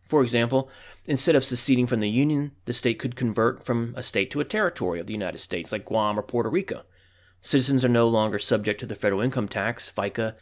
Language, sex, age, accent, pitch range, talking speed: English, male, 30-49, American, 105-130 Hz, 220 wpm